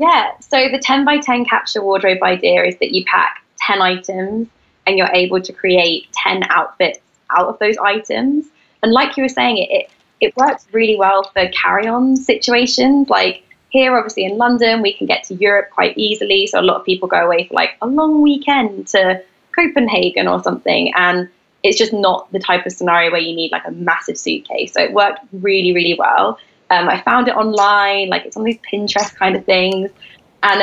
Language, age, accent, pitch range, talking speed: English, 20-39, British, 185-260 Hz, 200 wpm